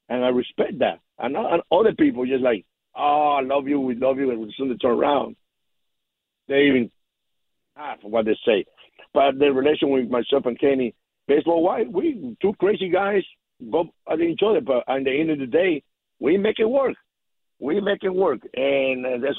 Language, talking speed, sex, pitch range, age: English, 190 wpm, male, 125-145 Hz, 60-79